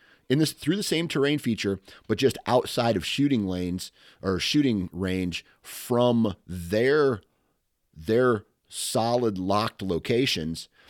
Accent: American